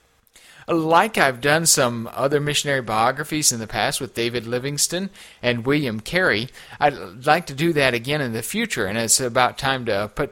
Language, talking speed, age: English, 180 wpm, 40-59